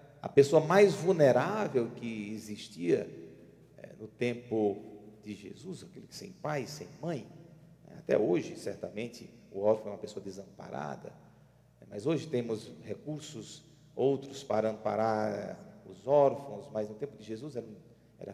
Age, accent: 40-59, Brazilian